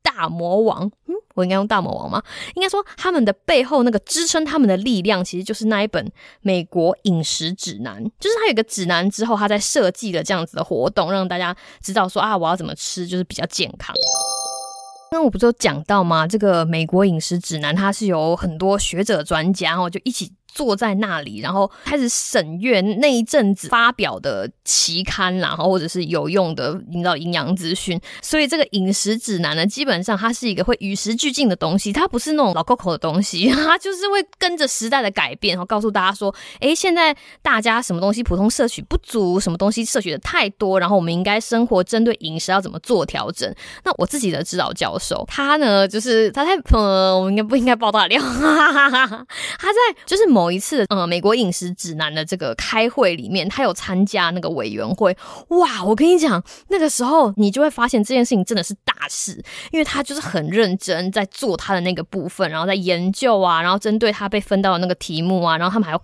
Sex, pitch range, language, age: female, 180-245 Hz, Chinese, 20-39